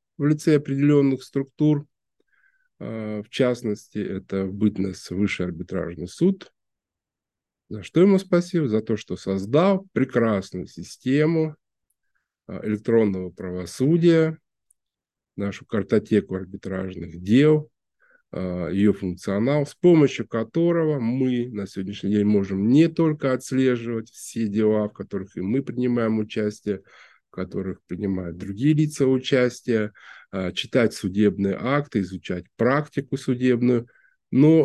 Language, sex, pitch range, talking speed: Russian, male, 100-140 Hz, 105 wpm